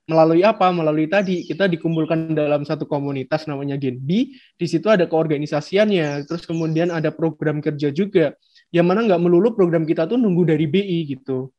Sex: male